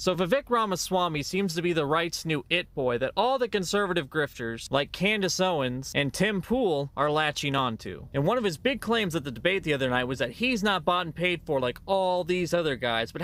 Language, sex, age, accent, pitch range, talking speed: English, male, 20-39, American, 140-200 Hz, 230 wpm